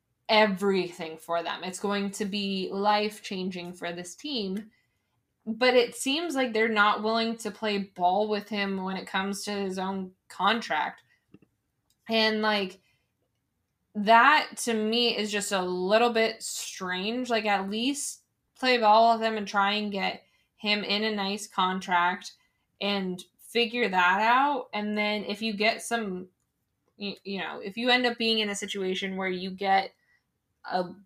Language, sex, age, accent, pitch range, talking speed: English, female, 10-29, American, 185-225 Hz, 160 wpm